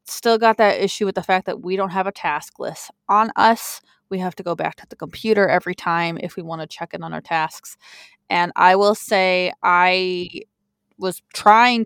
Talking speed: 215 wpm